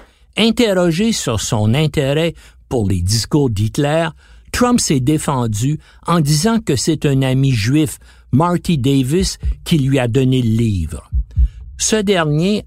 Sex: male